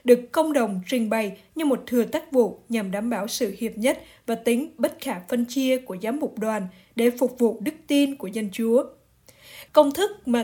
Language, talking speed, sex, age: Vietnamese, 215 wpm, female, 20-39